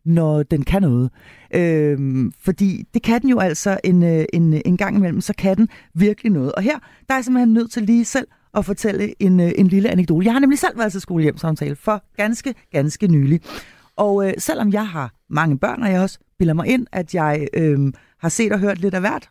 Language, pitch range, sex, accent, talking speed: Danish, 160-230 Hz, female, native, 220 wpm